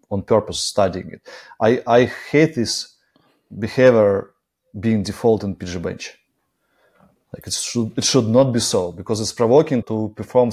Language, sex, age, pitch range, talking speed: English, male, 30-49, 105-125 Hz, 155 wpm